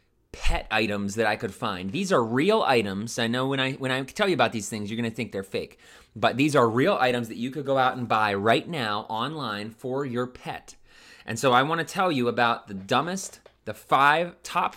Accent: American